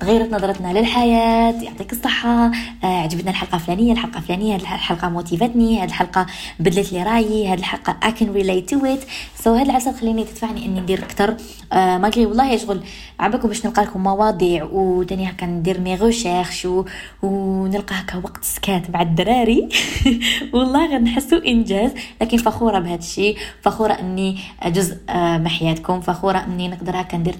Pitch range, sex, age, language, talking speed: 180-225 Hz, female, 20-39, Arabic, 150 wpm